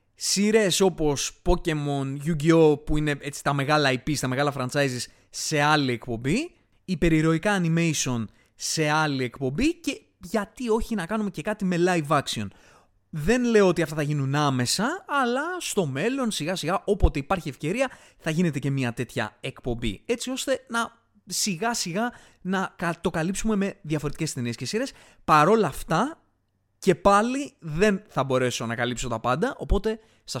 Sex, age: male, 20-39